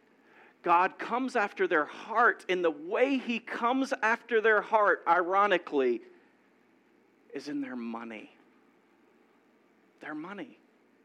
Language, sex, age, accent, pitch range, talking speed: English, male, 40-59, American, 170-250 Hz, 110 wpm